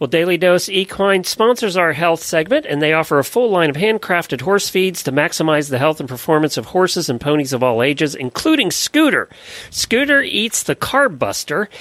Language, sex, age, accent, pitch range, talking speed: English, male, 40-59, American, 135-185 Hz, 195 wpm